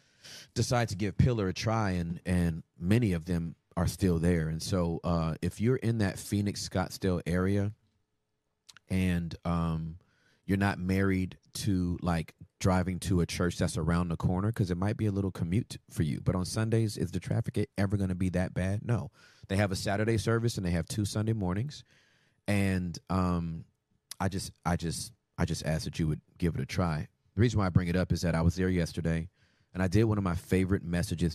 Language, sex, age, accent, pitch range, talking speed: English, male, 30-49, American, 85-105 Hz, 210 wpm